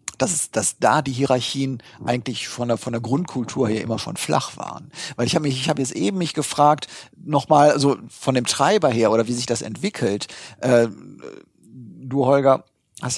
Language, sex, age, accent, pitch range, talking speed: German, male, 40-59, German, 120-145 Hz, 190 wpm